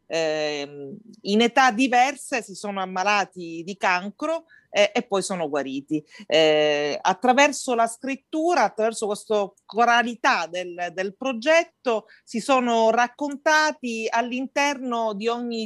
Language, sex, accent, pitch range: Italian, female, native, 190-235 Hz